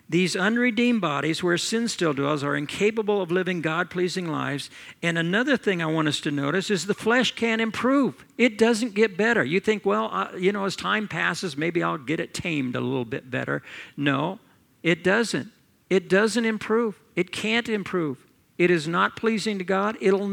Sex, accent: male, American